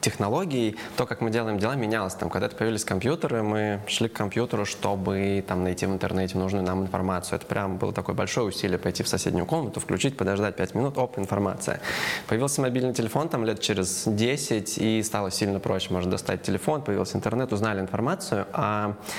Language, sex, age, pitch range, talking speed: Russian, male, 20-39, 100-115 Hz, 180 wpm